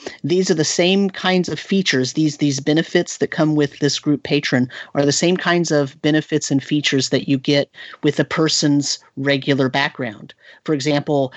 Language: English